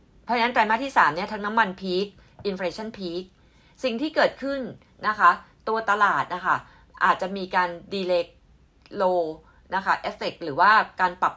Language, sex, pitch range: Thai, female, 175-220 Hz